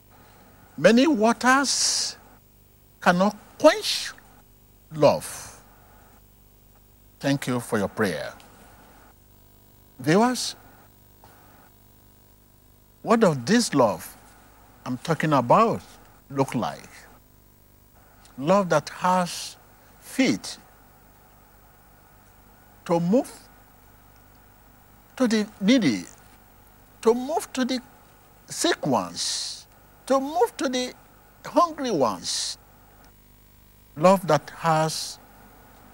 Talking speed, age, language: 75 wpm, 60-79, English